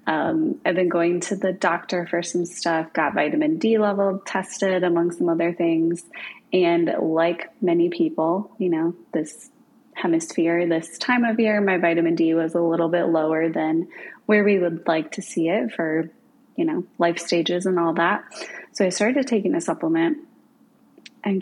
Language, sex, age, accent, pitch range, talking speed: English, female, 20-39, American, 170-220 Hz, 175 wpm